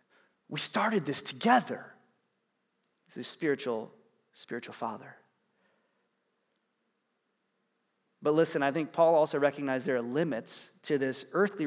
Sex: male